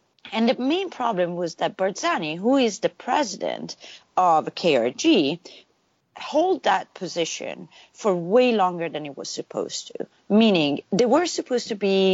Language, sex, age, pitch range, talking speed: English, female, 30-49, 180-265 Hz, 150 wpm